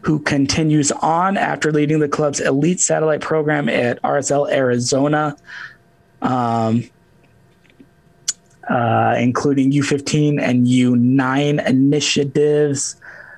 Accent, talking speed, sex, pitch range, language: American, 90 wpm, male, 125-155 Hz, English